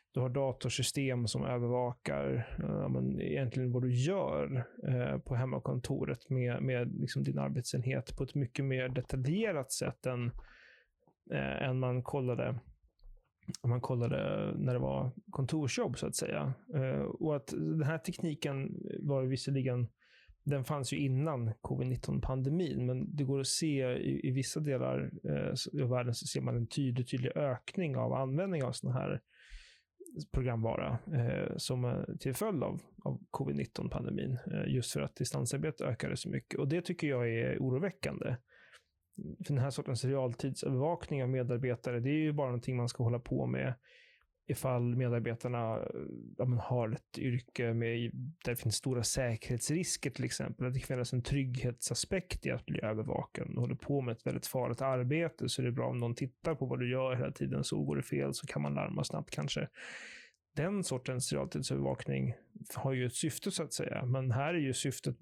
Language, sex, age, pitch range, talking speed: Swedish, male, 30-49, 120-140 Hz, 165 wpm